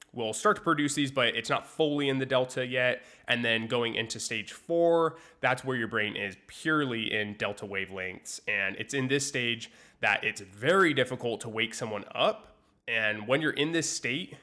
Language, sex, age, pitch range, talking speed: English, male, 20-39, 110-135 Hz, 195 wpm